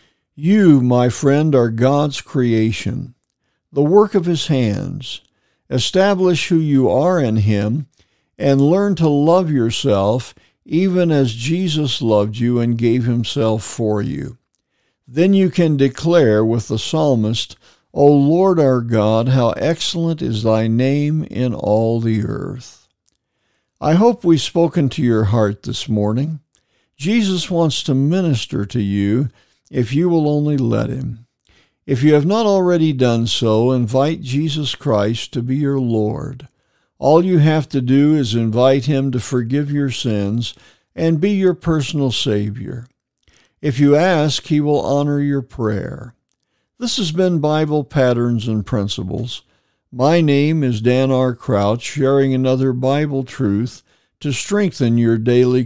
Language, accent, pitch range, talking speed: English, American, 115-155 Hz, 145 wpm